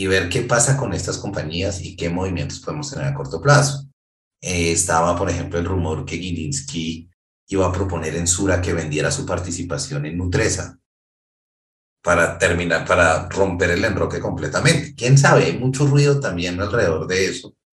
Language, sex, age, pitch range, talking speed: Spanish, male, 30-49, 85-135 Hz, 170 wpm